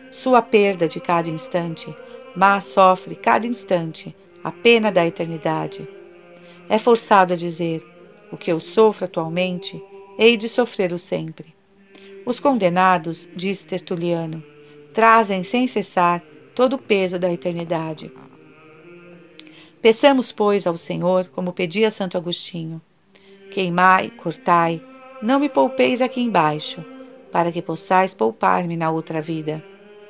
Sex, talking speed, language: female, 120 wpm, Portuguese